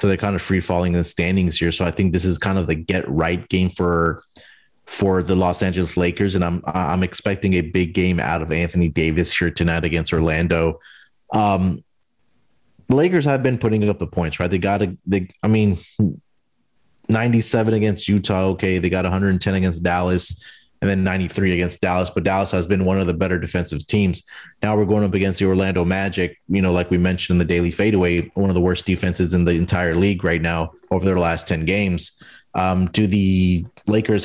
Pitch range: 90-100 Hz